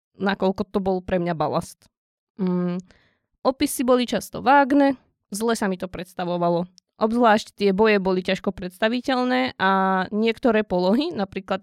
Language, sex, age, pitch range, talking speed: Slovak, female, 20-39, 190-235 Hz, 135 wpm